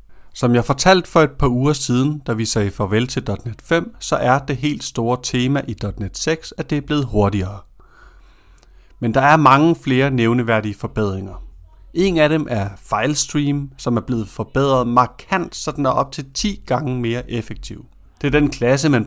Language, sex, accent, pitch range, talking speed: Danish, male, native, 105-135 Hz, 190 wpm